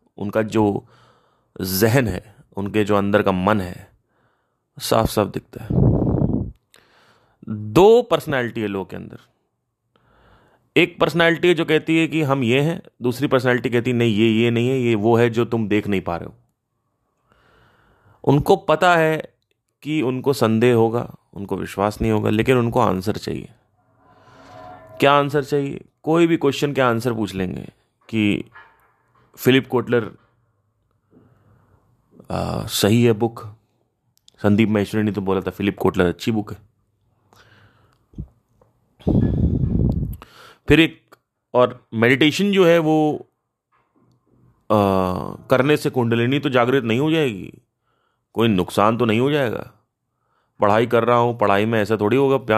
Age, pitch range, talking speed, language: 30-49, 105-130 Hz, 140 wpm, Hindi